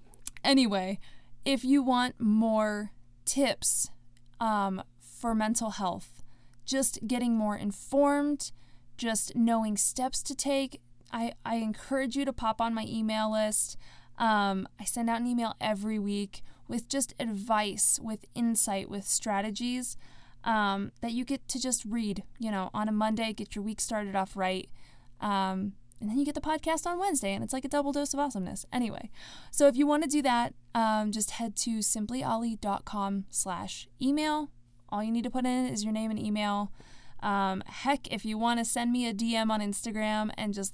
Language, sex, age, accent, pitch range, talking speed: English, female, 20-39, American, 195-250 Hz, 175 wpm